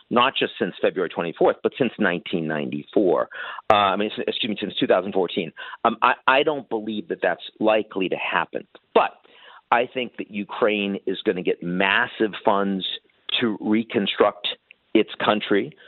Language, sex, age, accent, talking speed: English, male, 50-69, American, 150 wpm